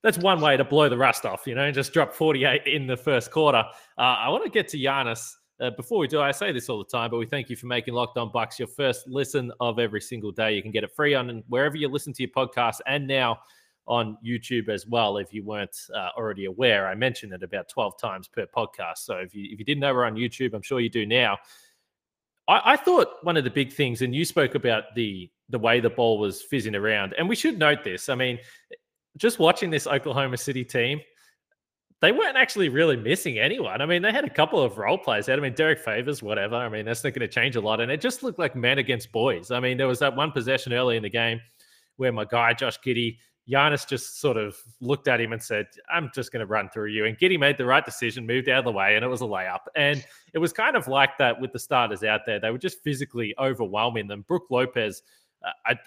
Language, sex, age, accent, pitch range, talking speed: English, male, 20-39, Australian, 115-145 Hz, 255 wpm